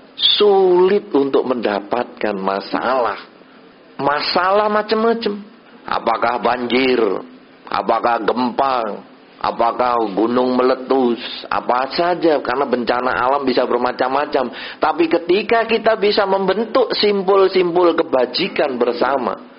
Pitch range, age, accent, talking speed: 115-190 Hz, 40-59, native, 85 wpm